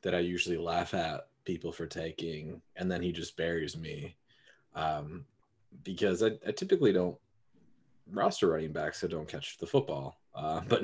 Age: 20-39